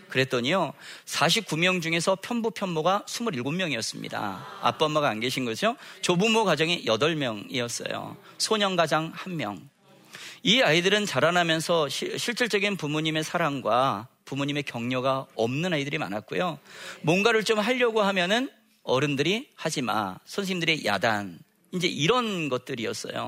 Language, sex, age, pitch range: Korean, male, 40-59, 145-200 Hz